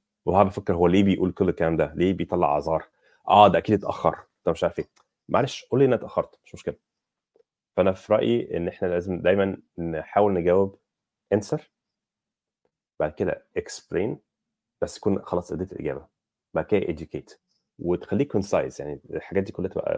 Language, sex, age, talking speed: Arabic, male, 30-49, 165 wpm